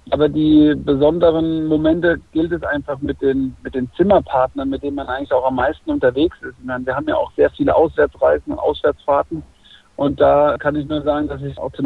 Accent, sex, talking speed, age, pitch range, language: German, male, 200 wpm, 50-69, 145-175 Hz, German